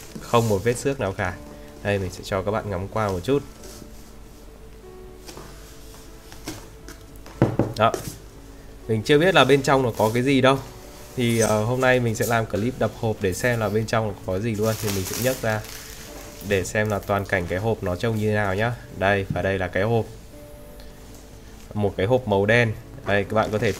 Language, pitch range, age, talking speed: Vietnamese, 95-115 Hz, 20-39, 205 wpm